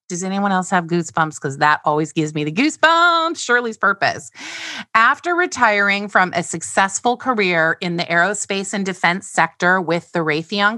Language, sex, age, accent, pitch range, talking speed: English, female, 30-49, American, 175-240 Hz, 160 wpm